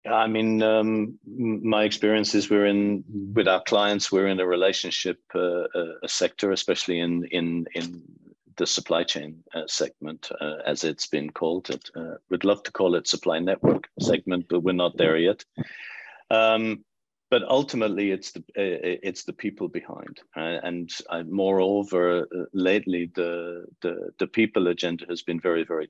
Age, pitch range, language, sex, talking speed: 50-69, 85-100 Hz, English, male, 170 wpm